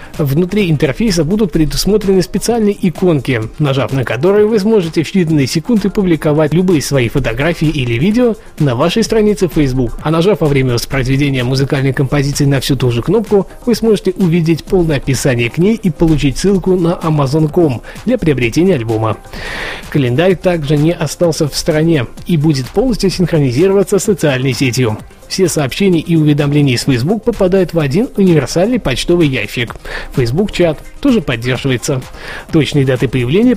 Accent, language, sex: native, Russian, male